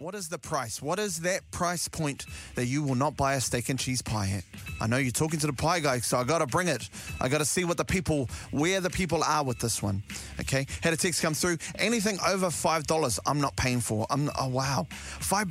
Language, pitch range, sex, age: English, 125-175 Hz, male, 30-49